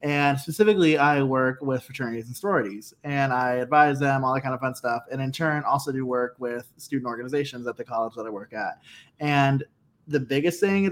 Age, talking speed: 20-39, 215 wpm